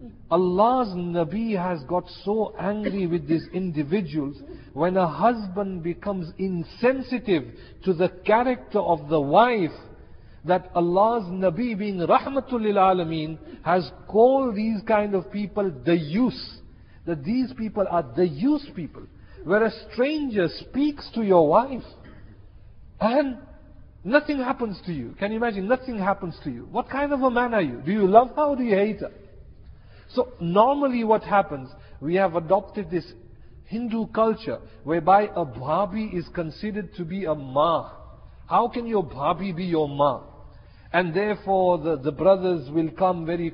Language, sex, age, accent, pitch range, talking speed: English, male, 50-69, Indian, 160-215 Hz, 155 wpm